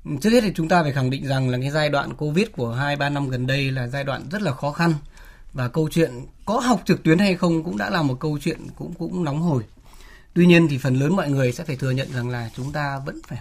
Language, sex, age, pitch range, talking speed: Vietnamese, male, 20-39, 130-160 Hz, 280 wpm